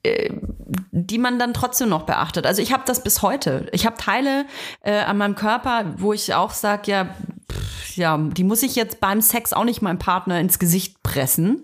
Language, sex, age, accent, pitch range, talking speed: German, female, 30-49, German, 175-225 Hz, 200 wpm